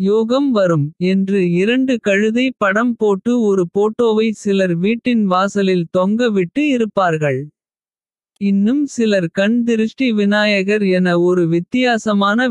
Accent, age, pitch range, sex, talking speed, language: native, 50-69, 185-230 Hz, male, 105 wpm, Tamil